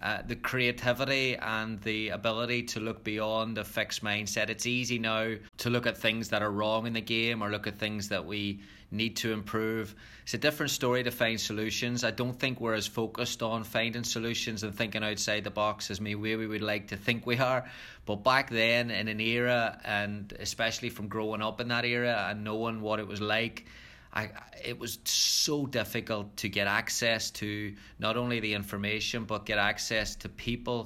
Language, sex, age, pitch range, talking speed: English, male, 20-39, 105-115 Hz, 200 wpm